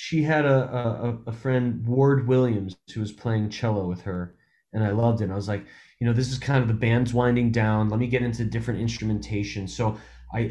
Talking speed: 230 wpm